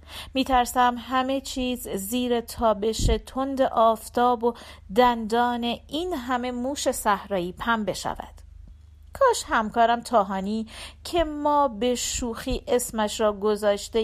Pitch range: 220-270 Hz